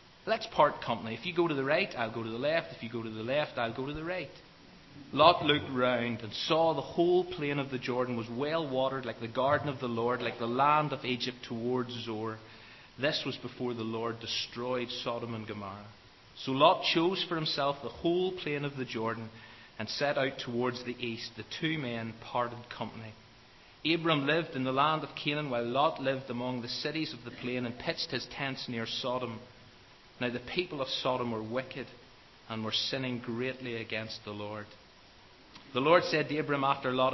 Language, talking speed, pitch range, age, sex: English, 205 wpm, 115-145 Hz, 30-49, male